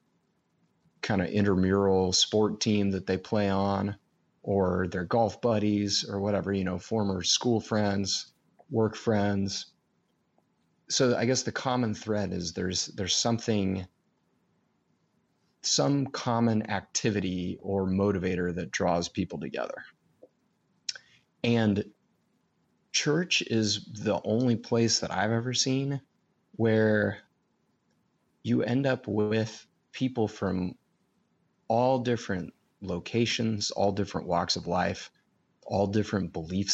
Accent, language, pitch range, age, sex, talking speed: American, English, 95-115 Hz, 30-49, male, 115 wpm